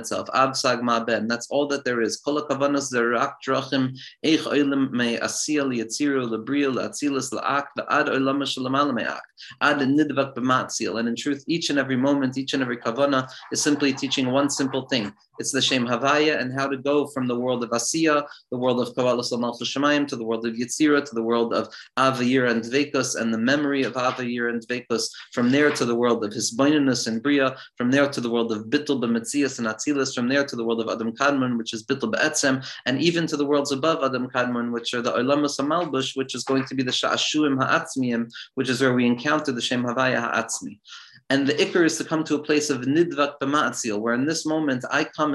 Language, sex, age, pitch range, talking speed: English, male, 30-49, 120-140 Hz, 190 wpm